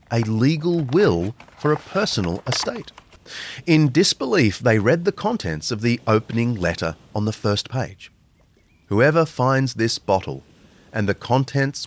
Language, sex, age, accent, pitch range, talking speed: English, male, 40-59, Australian, 105-150 Hz, 140 wpm